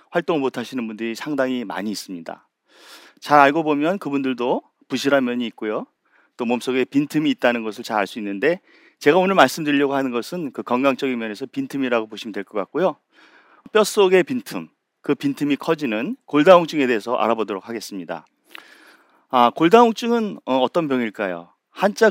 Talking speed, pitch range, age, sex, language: 130 wpm, 120-175 Hz, 40-59, male, English